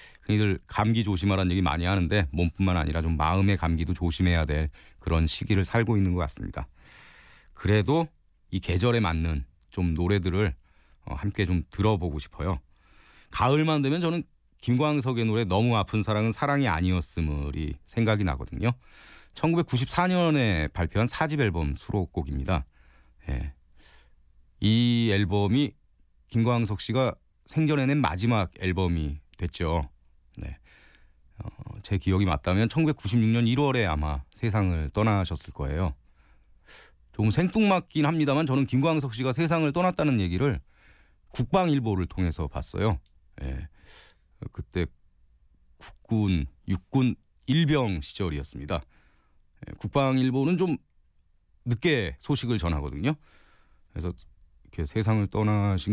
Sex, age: male, 40-59